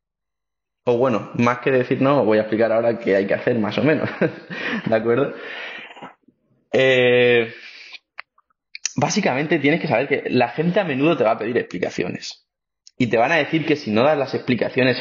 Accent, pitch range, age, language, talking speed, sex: Spanish, 115-155 Hz, 20-39, Spanish, 185 wpm, male